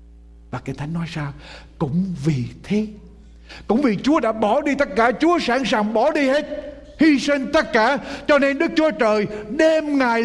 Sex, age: male, 60-79